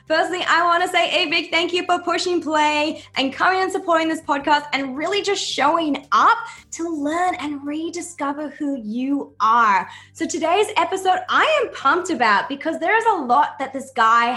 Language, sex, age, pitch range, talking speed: English, female, 10-29, 235-335 Hz, 190 wpm